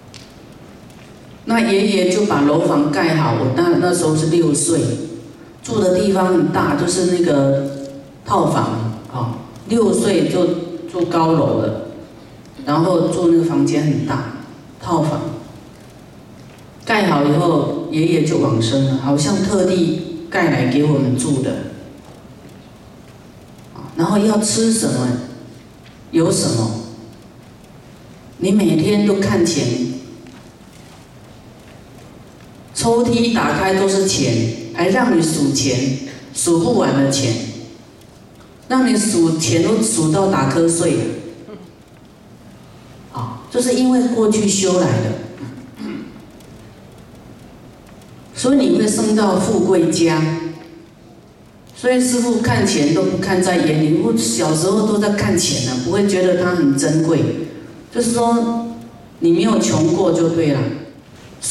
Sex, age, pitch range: female, 40-59, 140-195 Hz